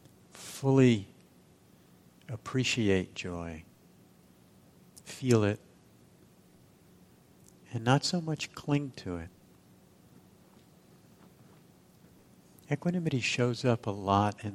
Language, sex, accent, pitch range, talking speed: English, male, American, 90-105 Hz, 75 wpm